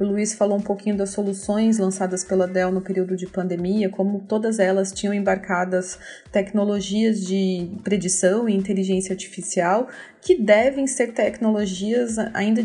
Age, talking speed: 20-39, 140 wpm